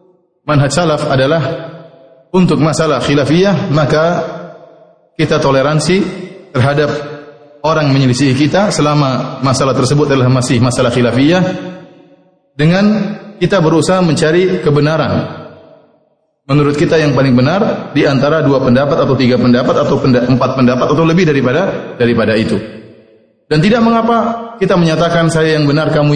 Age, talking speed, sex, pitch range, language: 30-49, 125 wpm, male, 135-165 Hz, English